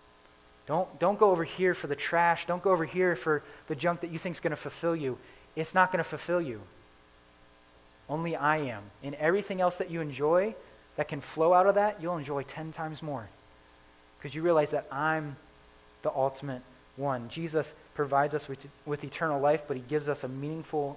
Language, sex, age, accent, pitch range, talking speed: English, male, 20-39, American, 100-155 Hz, 200 wpm